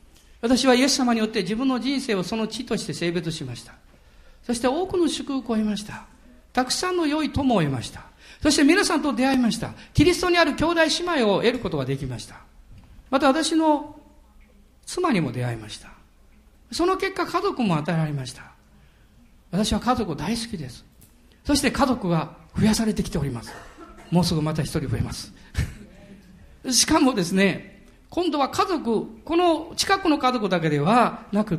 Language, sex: Japanese, male